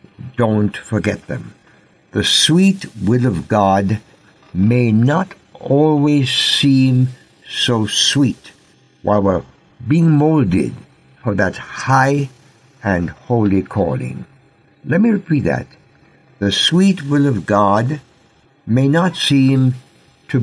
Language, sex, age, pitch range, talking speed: English, male, 60-79, 95-135 Hz, 110 wpm